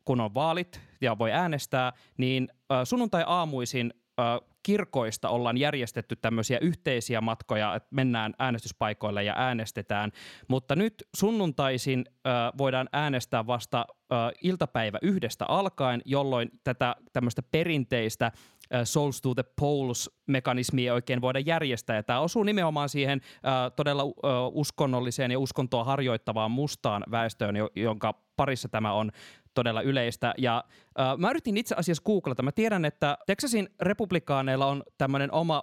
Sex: male